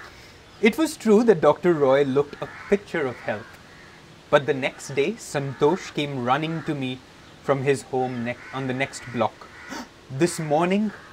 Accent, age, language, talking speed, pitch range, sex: Indian, 30-49, English, 155 wpm, 125-155 Hz, male